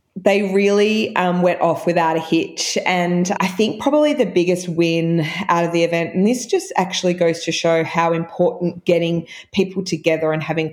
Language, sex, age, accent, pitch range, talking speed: English, female, 20-39, Australian, 160-175 Hz, 185 wpm